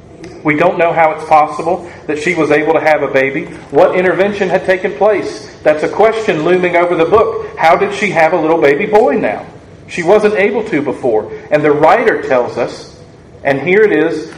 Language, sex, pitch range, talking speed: English, male, 150-205 Hz, 205 wpm